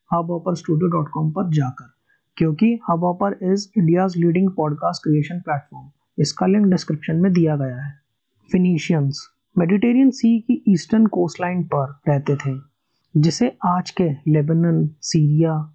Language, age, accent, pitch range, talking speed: Hindi, 30-49, native, 150-190 Hz, 120 wpm